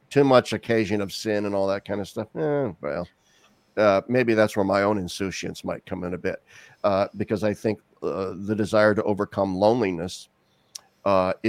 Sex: male